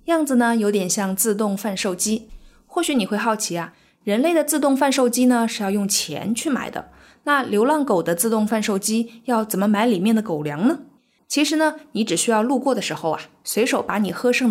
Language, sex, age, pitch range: Chinese, female, 20-39, 195-265 Hz